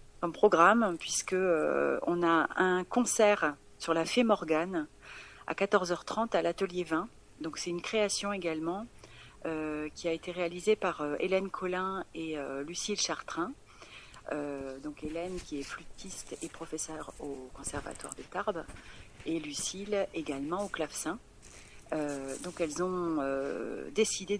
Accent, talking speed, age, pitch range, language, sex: French, 145 wpm, 40-59, 145-185 Hz, French, female